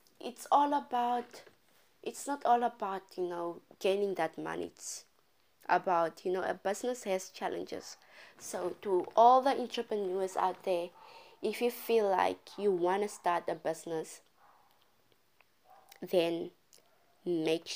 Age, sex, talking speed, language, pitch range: 20-39, female, 130 wpm, English, 175-285 Hz